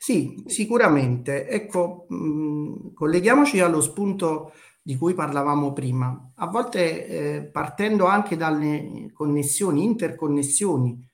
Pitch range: 140-180 Hz